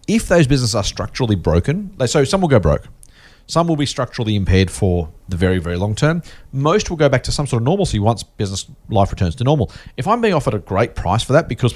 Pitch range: 100-130 Hz